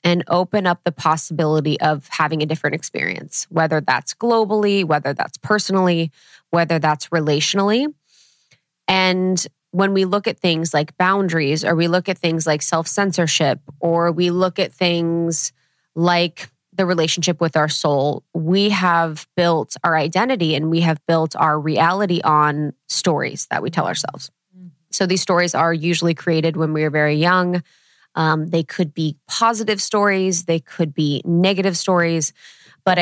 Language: English